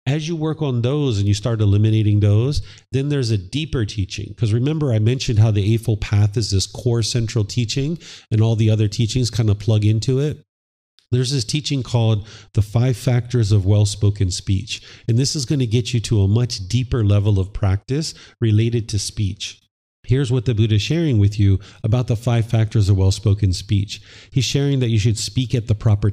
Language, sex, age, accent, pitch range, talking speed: English, male, 40-59, American, 100-120 Hz, 200 wpm